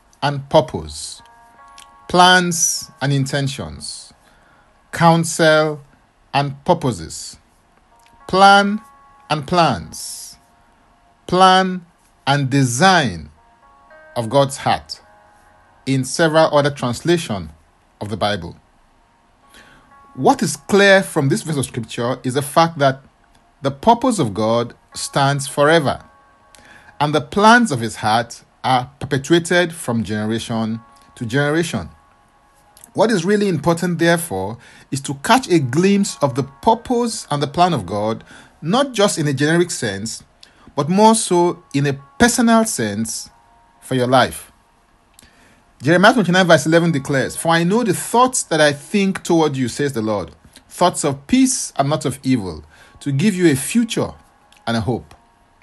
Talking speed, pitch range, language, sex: 130 wpm, 115-175 Hz, English, male